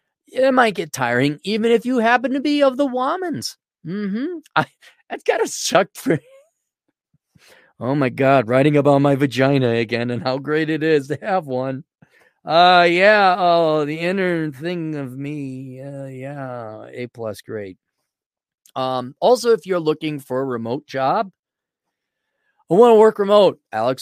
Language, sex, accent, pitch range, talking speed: English, male, American, 125-180 Hz, 160 wpm